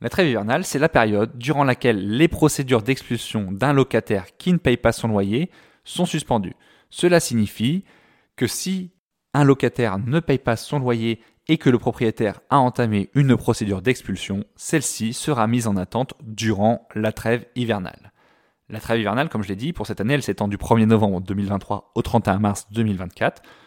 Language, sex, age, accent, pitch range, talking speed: French, male, 20-39, French, 110-135 Hz, 175 wpm